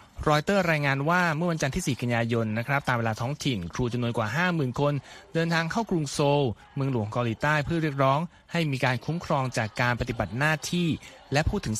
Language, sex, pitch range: Thai, male, 120-160 Hz